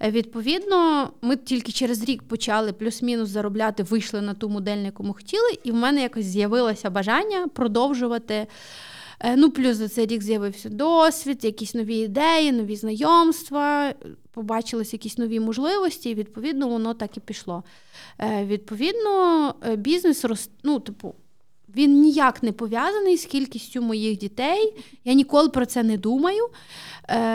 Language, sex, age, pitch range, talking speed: Ukrainian, female, 30-49, 215-270 Hz, 135 wpm